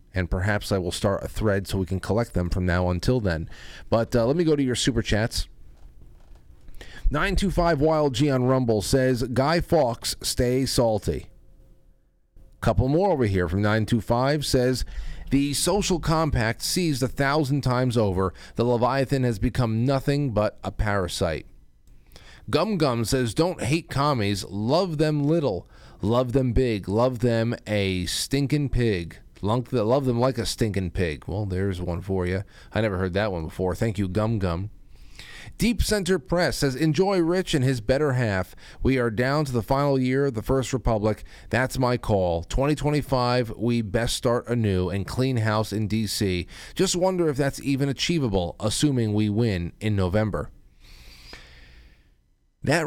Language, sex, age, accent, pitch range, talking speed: English, male, 40-59, American, 95-135 Hz, 165 wpm